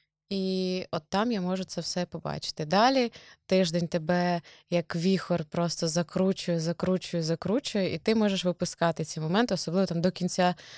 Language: Ukrainian